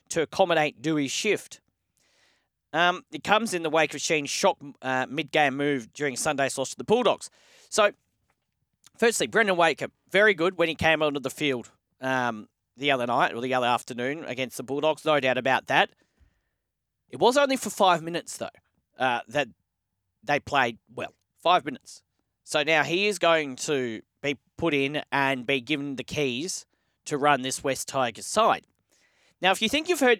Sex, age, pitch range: male, 40-59, 140-180 Hz